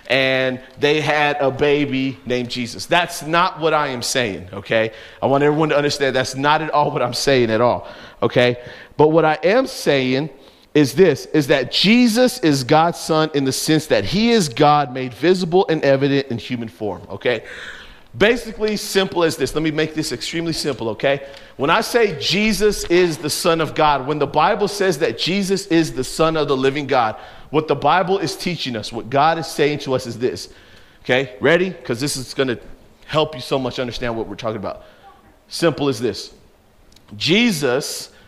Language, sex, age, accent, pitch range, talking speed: English, male, 40-59, American, 130-170 Hz, 195 wpm